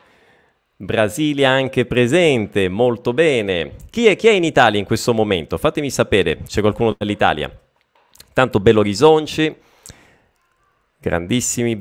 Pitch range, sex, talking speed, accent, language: 100-130 Hz, male, 110 wpm, native, Italian